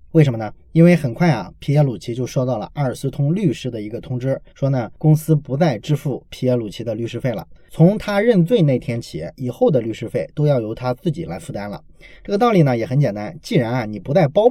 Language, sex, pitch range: Chinese, male, 125-170 Hz